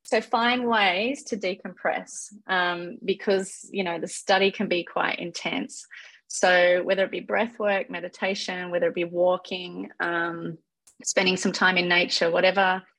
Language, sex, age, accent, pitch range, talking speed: French, female, 30-49, Australian, 170-200 Hz, 155 wpm